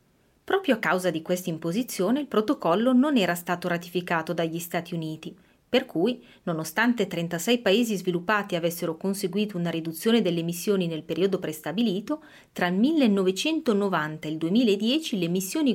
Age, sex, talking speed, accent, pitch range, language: 30-49, female, 145 wpm, native, 175-245 Hz, Italian